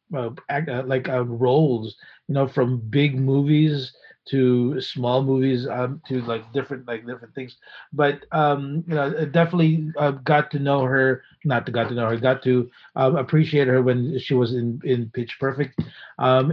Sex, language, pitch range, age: male, English, 130-155 Hz, 30-49